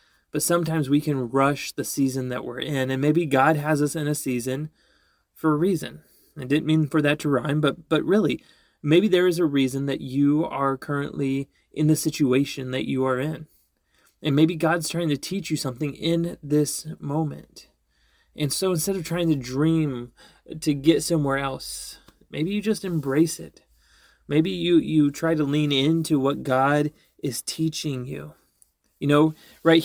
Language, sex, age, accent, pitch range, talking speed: English, male, 30-49, American, 140-160 Hz, 180 wpm